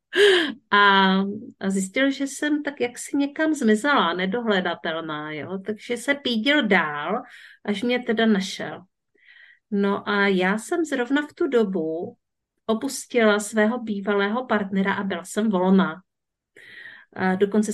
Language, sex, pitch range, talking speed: Czech, female, 195-235 Hz, 125 wpm